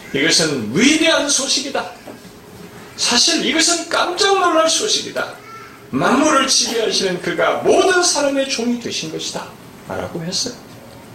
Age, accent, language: 40-59, native, Korean